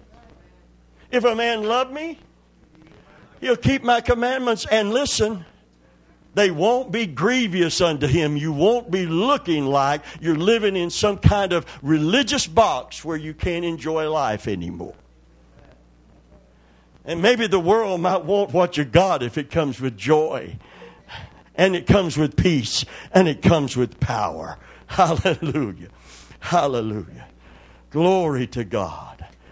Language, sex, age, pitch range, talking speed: English, male, 60-79, 110-180 Hz, 130 wpm